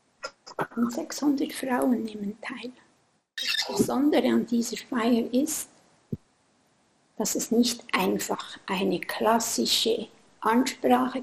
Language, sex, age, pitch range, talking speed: German, female, 60-79, 225-275 Hz, 95 wpm